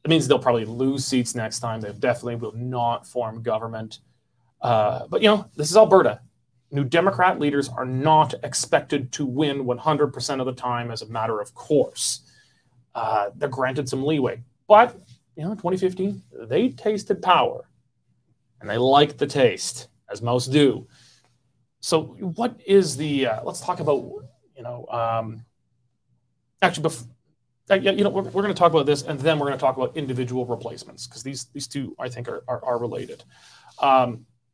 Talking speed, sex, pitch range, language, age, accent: 170 wpm, male, 120-155 Hz, English, 30-49, American